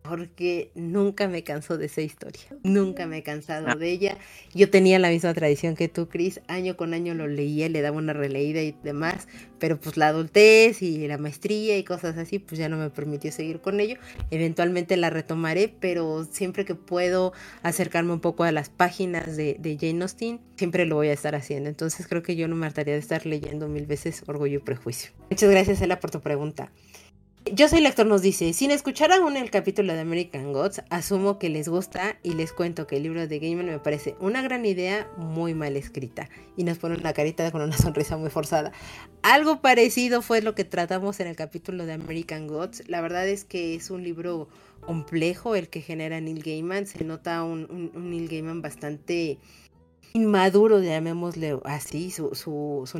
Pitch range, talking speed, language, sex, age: 155-185 Hz, 200 wpm, Spanish, female, 30-49